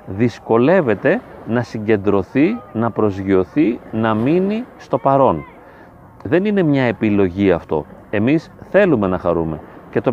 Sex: male